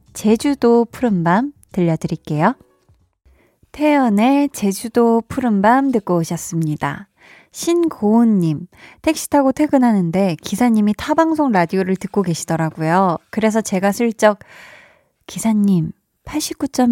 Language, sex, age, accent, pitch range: Korean, female, 20-39, native, 175-240 Hz